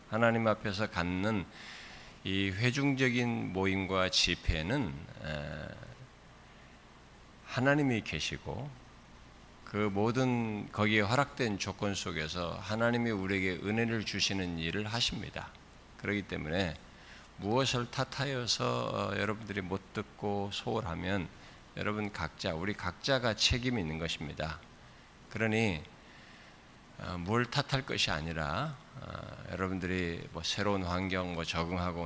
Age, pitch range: 50-69, 80-110 Hz